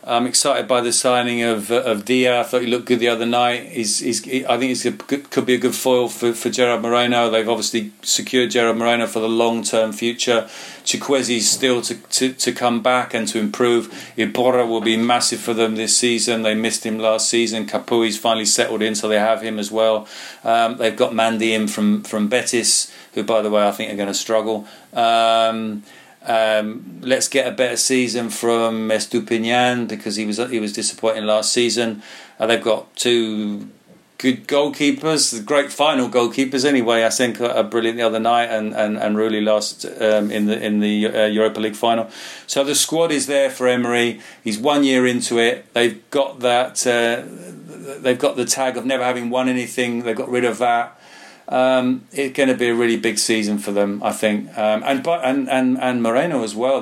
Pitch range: 110-125 Hz